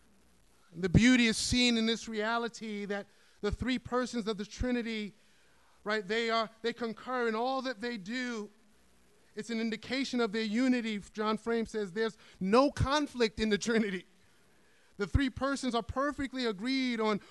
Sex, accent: male, American